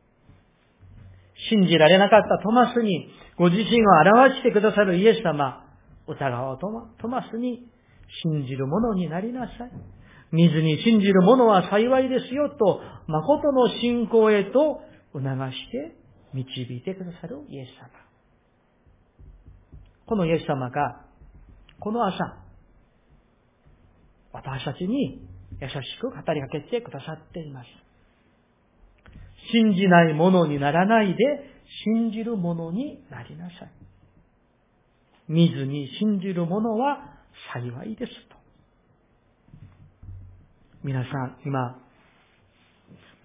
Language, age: Japanese, 40-59